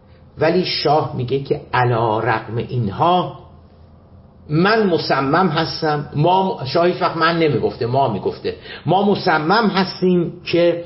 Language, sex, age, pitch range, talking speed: Persian, male, 50-69, 145-200 Hz, 110 wpm